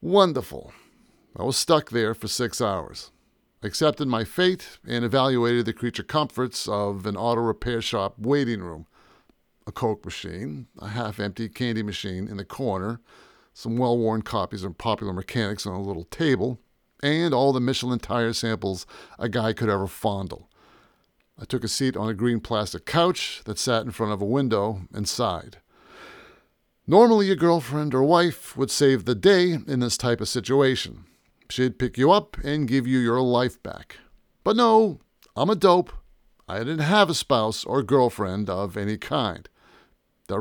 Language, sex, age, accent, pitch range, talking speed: English, male, 50-69, American, 105-140 Hz, 170 wpm